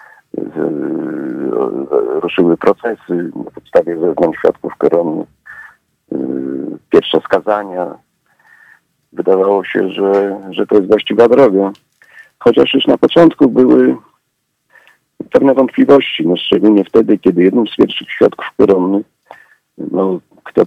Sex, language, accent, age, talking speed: male, Polish, native, 50-69, 100 wpm